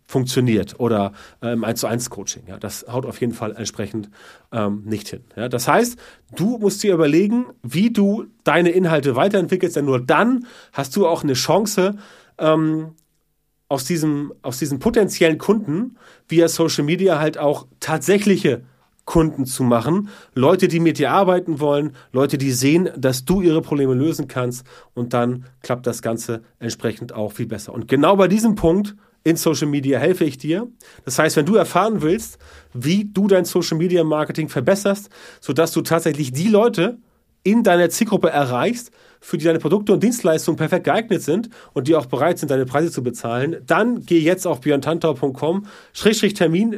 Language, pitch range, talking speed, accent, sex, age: German, 130-185 Hz, 170 wpm, German, male, 30-49